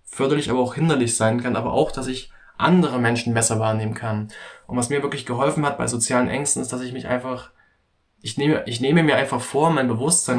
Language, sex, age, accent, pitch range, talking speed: German, male, 20-39, German, 115-140 Hz, 220 wpm